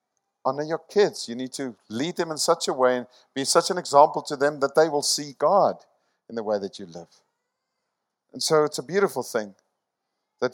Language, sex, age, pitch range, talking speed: English, male, 50-69, 140-205 Hz, 210 wpm